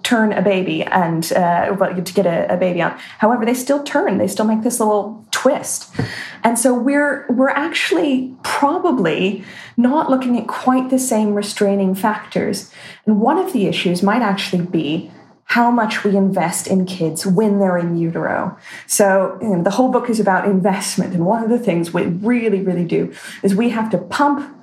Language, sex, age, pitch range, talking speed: English, female, 20-39, 195-255 Hz, 185 wpm